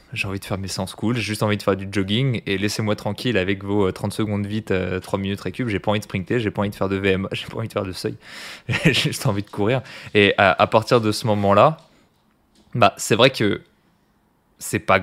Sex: male